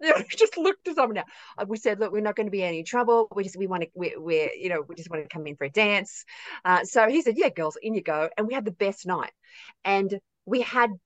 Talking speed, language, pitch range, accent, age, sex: 270 wpm, English, 185-235 Hz, Australian, 40-59, female